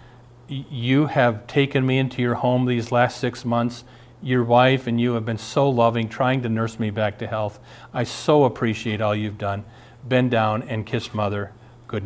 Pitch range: 110-125 Hz